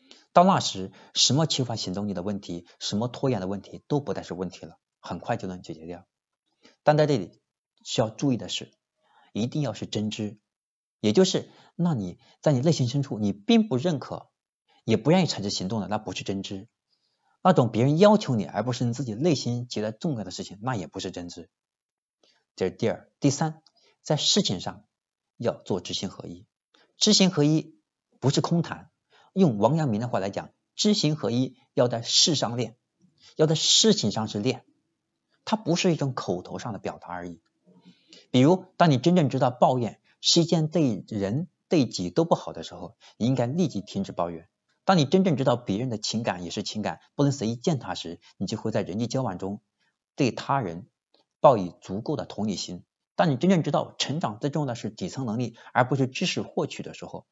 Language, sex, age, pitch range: Chinese, male, 50-69, 100-155 Hz